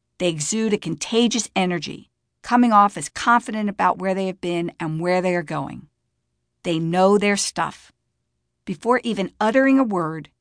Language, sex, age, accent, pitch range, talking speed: English, female, 50-69, American, 160-210 Hz, 160 wpm